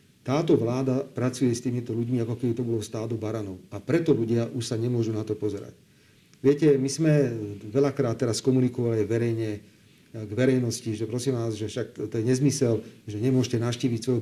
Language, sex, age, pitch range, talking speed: Slovak, male, 40-59, 115-140 Hz, 175 wpm